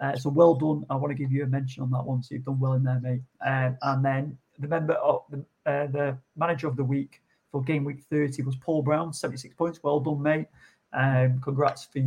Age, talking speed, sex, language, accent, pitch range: 40-59, 245 wpm, male, English, British, 130-155 Hz